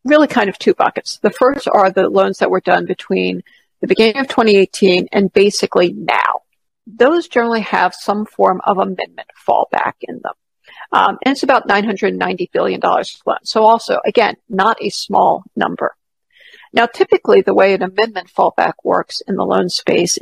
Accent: American